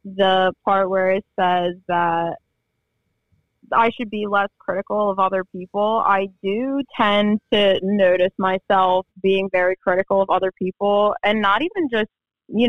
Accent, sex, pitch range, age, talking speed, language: American, female, 185-215 Hz, 20-39, 145 wpm, English